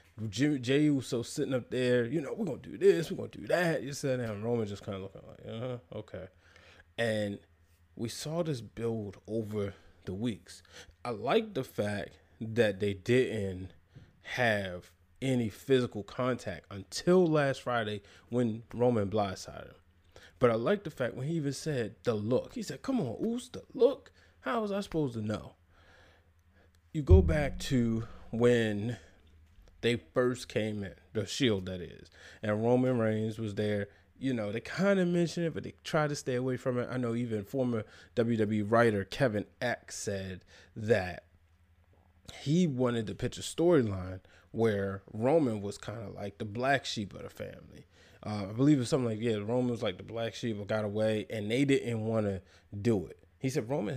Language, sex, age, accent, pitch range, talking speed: English, male, 20-39, American, 95-130 Hz, 180 wpm